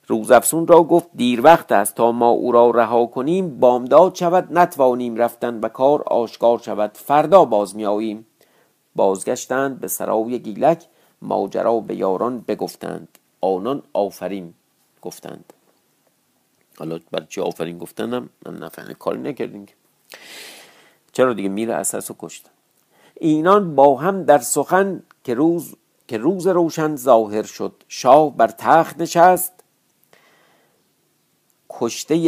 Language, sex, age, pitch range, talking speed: Persian, male, 50-69, 110-155 Hz, 120 wpm